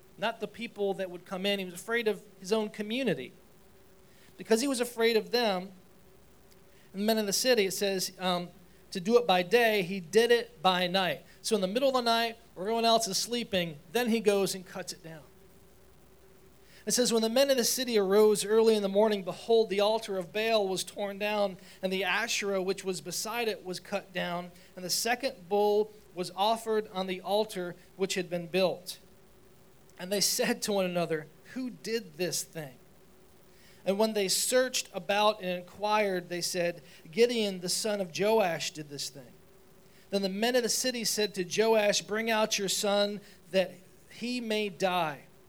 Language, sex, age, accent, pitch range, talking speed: English, male, 40-59, American, 185-220 Hz, 190 wpm